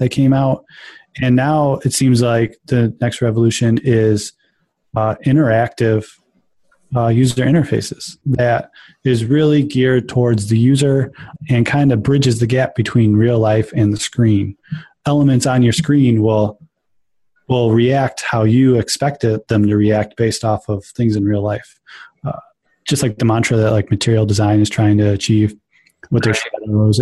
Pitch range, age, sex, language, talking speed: 110-135 Hz, 20-39, male, English, 160 wpm